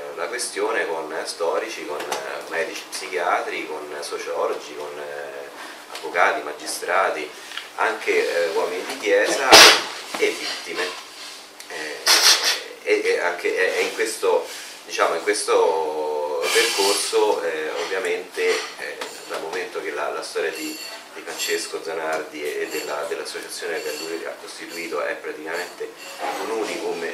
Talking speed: 110 wpm